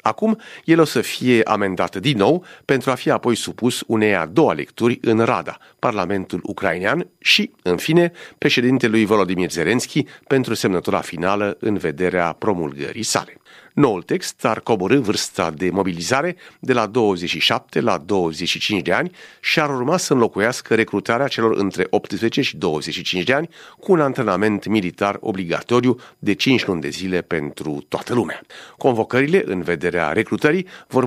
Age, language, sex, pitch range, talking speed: 40-59, Romanian, male, 95-130 Hz, 155 wpm